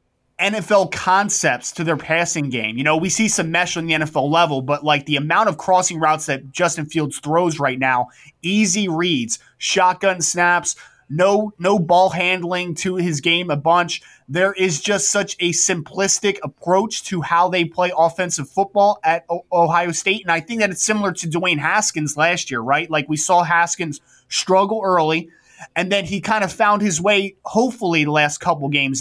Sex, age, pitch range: male, 20-39, 155-195 Hz